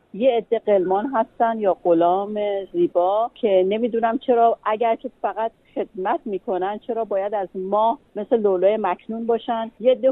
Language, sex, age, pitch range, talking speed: Persian, female, 40-59, 195-265 Hz, 150 wpm